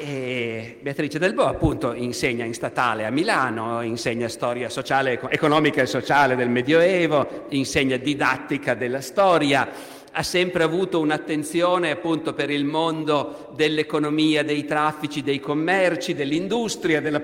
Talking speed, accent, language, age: 130 wpm, native, Italian, 50-69